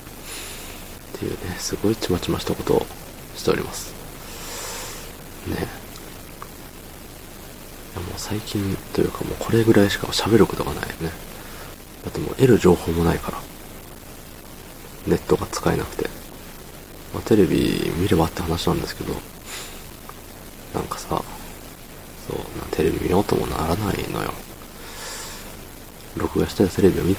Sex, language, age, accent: male, Japanese, 40-59, native